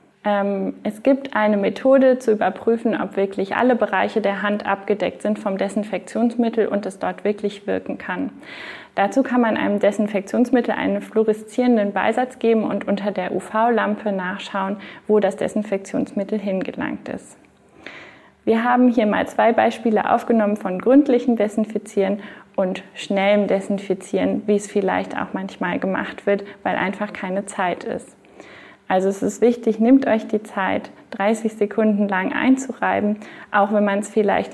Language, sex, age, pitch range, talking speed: German, female, 30-49, 200-235 Hz, 145 wpm